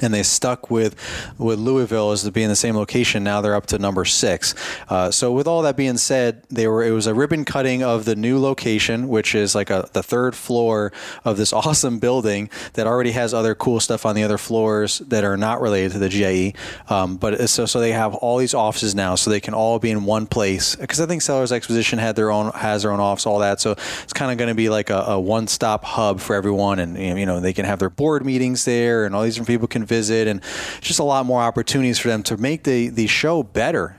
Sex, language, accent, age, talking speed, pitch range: male, English, American, 20-39, 255 wpm, 105-125 Hz